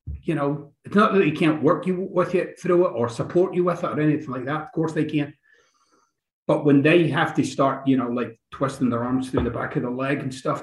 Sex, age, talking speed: male, 30-49, 260 wpm